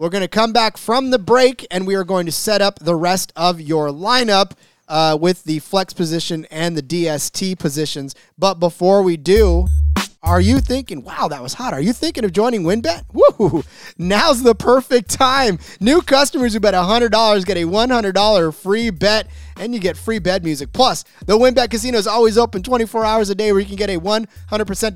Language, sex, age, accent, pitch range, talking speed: English, male, 30-49, American, 165-230 Hz, 200 wpm